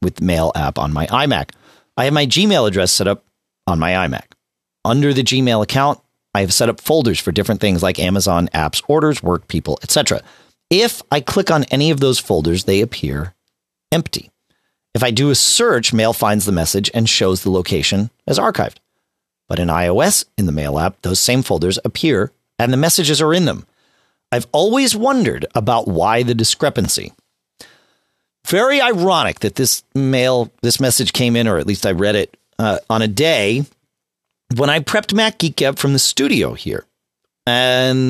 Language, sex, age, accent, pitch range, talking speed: English, male, 40-59, American, 100-145 Hz, 185 wpm